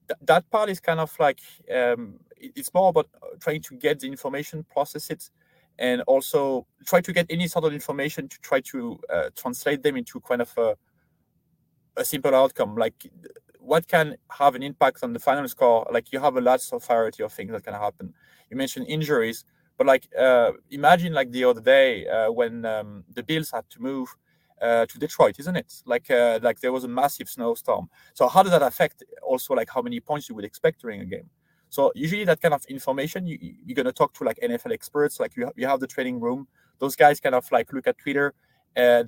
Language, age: English, 30-49